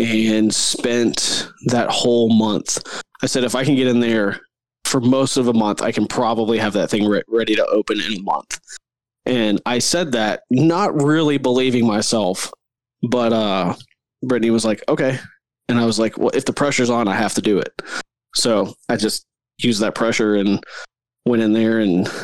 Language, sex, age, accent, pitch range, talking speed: English, male, 20-39, American, 110-130 Hz, 185 wpm